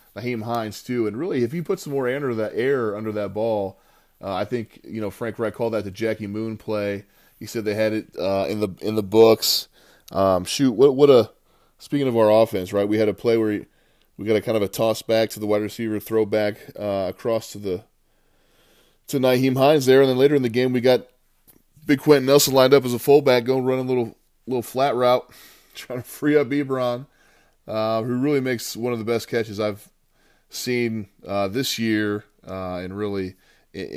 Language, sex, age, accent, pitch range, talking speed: English, male, 20-39, American, 100-130 Hz, 215 wpm